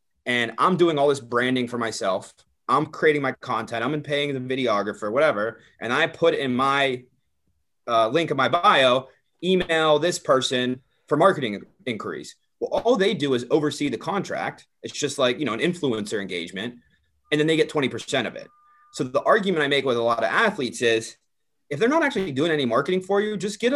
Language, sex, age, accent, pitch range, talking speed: English, male, 30-49, American, 125-175 Hz, 195 wpm